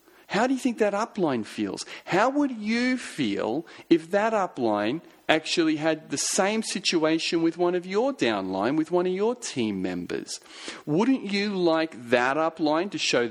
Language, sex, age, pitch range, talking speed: English, male, 40-59, 125-190 Hz, 165 wpm